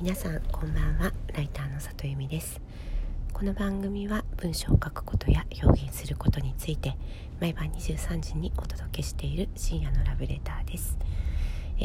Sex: female